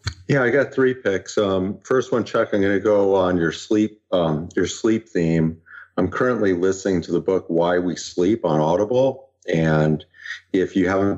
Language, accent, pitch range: English, American, 80-95 Hz